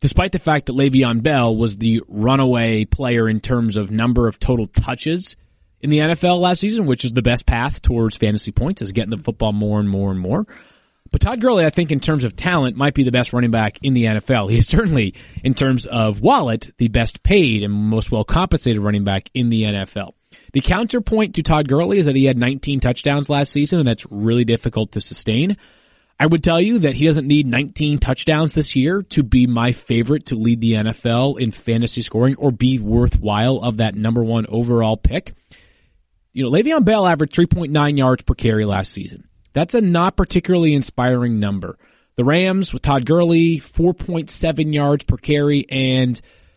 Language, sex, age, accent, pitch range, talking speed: English, male, 30-49, American, 115-165 Hz, 200 wpm